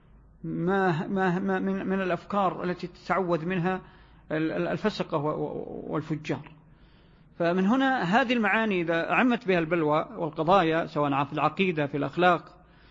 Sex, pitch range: male, 155-200 Hz